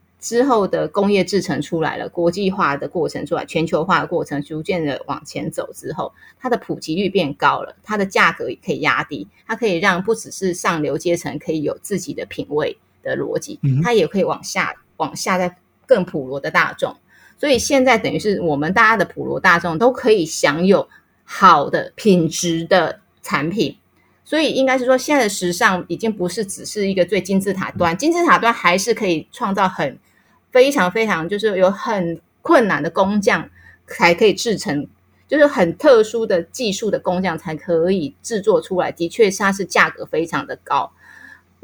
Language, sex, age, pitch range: Chinese, female, 30-49, 175-250 Hz